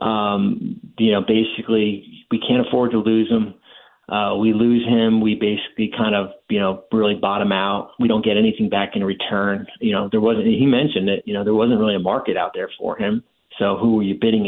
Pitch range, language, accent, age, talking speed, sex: 110-130 Hz, English, American, 40-59, 220 wpm, male